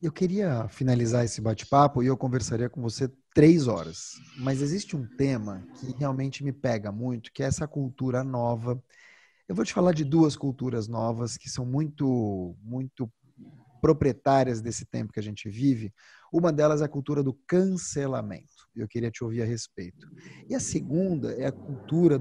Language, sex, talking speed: English, male, 175 wpm